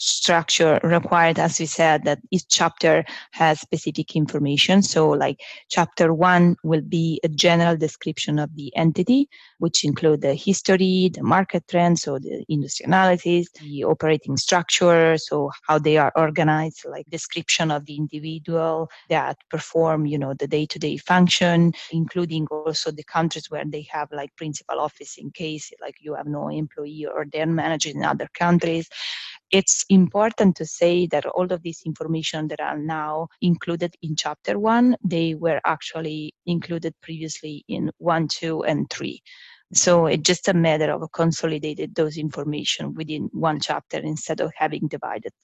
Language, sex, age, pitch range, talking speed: English, female, 20-39, 155-175 Hz, 155 wpm